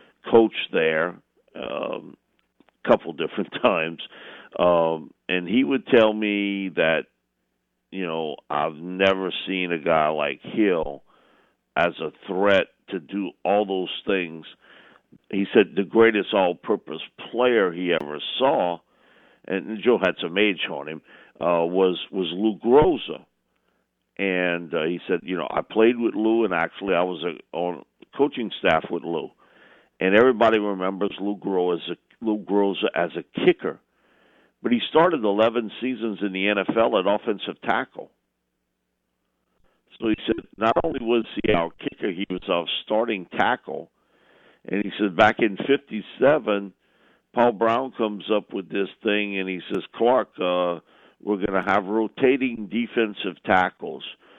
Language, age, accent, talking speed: English, 50-69, American, 140 wpm